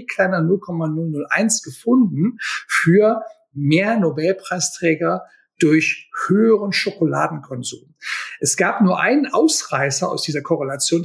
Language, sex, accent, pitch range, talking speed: German, male, German, 155-205 Hz, 90 wpm